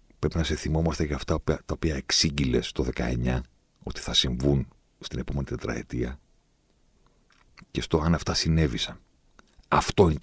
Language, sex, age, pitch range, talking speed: Greek, male, 50-69, 65-80 Hz, 140 wpm